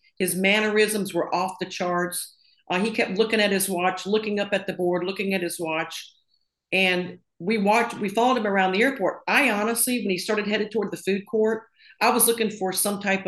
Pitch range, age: 170-205 Hz, 50-69